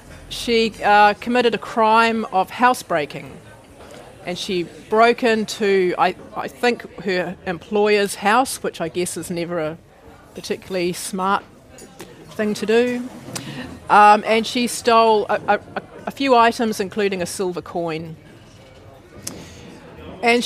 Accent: Australian